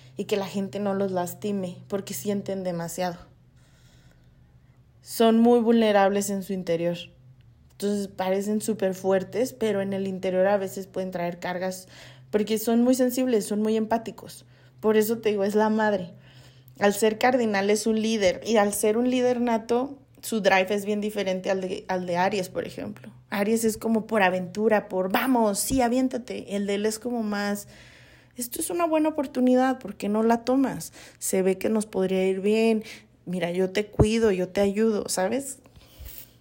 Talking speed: 175 wpm